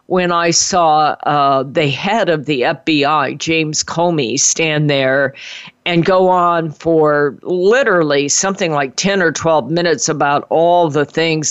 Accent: American